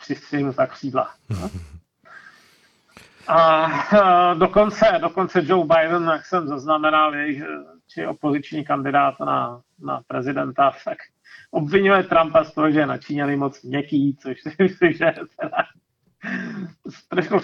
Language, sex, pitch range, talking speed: Czech, male, 140-185 Hz, 130 wpm